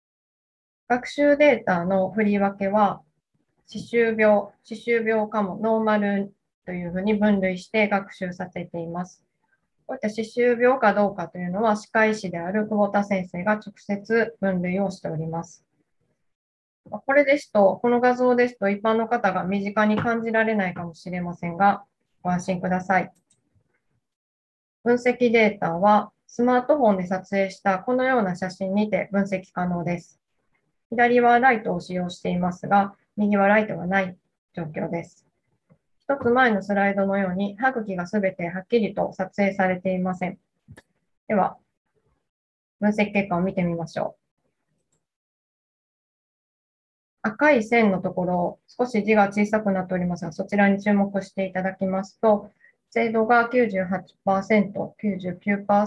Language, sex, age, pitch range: Japanese, female, 20-39, 185-220 Hz